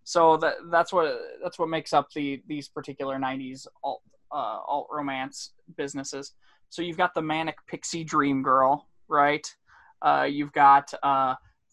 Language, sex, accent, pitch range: English, male, American, 140-160 Hz